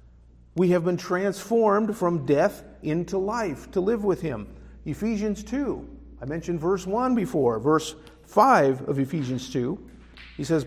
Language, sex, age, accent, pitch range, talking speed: English, male, 50-69, American, 120-190 Hz, 145 wpm